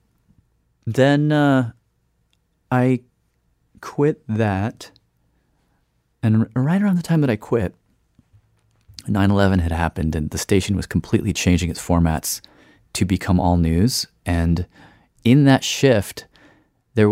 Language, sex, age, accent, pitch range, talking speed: English, male, 30-49, American, 85-110 Hz, 120 wpm